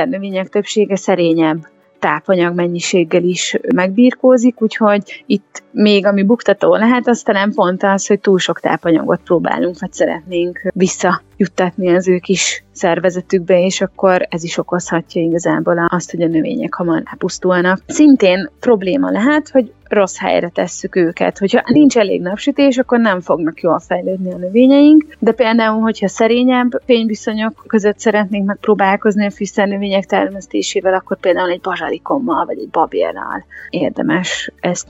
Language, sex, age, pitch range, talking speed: Hungarian, female, 30-49, 185-245 Hz, 140 wpm